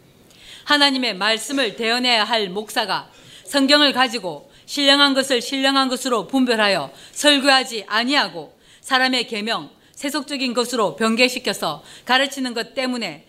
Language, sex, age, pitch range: Korean, female, 40-59, 225-280 Hz